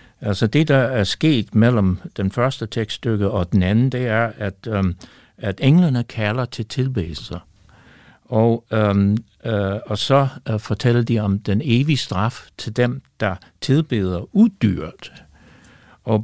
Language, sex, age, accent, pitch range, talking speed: Danish, male, 60-79, native, 100-130 Hz, 145 wpm